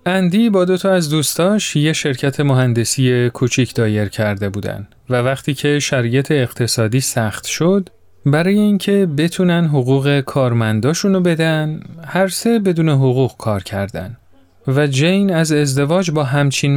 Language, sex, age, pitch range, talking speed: Persian, male, 40-59, 115-155 Hz, 135 wpm